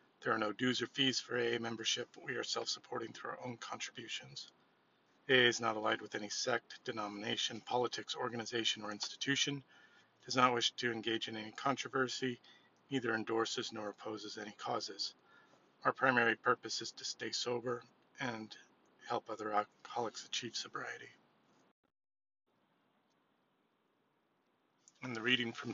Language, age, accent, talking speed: English, 40-59, American, 140 wpm